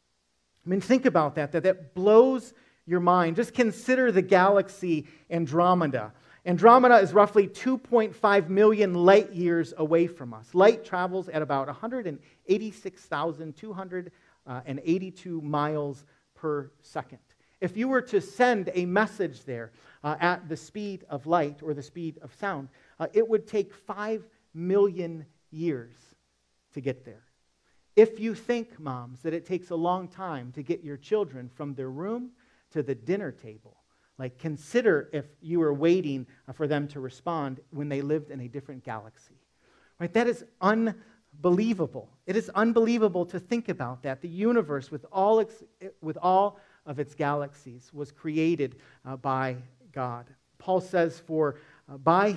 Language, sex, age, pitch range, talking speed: English, male, 40-59, 145-195 Hz, 150 wpm